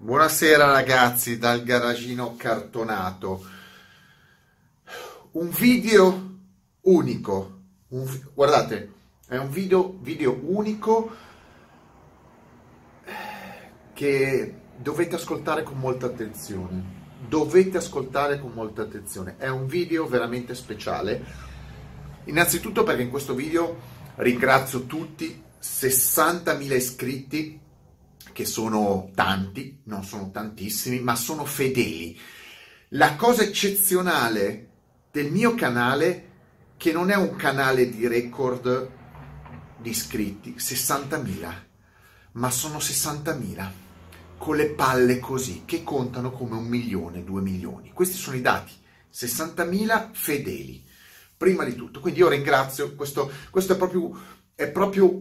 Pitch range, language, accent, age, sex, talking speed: 105-160 Hz, Italian, native, 30-49, male, 105 wpm